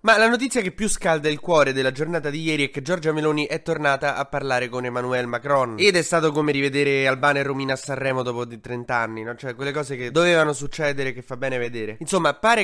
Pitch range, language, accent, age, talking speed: 120-155 Hz, Italian, native, 20-39, 235 wpm